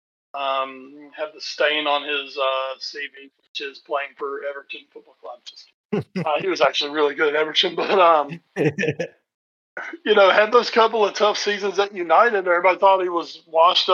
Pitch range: 145-185 Hz